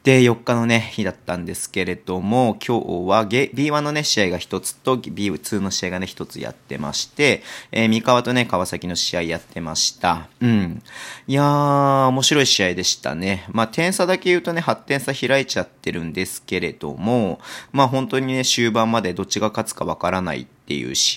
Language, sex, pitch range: Japanese, male, 95-130 Hz